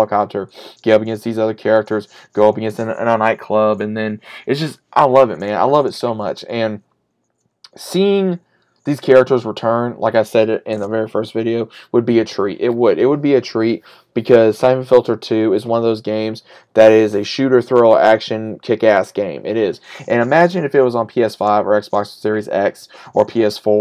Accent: American